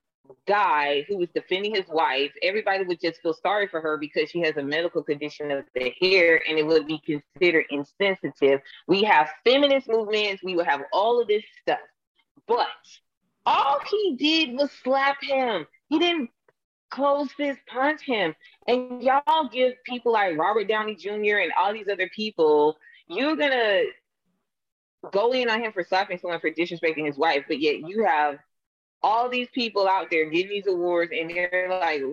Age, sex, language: 20-39, female, English